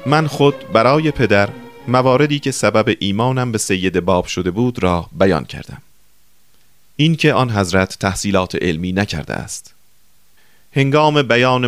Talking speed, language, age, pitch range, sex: 130 wpm, Persian, 30-49, 95-130 Hz, male